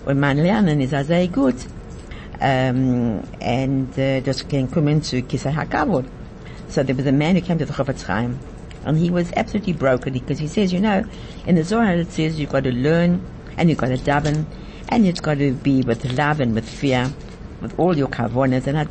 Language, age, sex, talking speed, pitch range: English, 60-79, female, 205 wpm, 125-155 Hz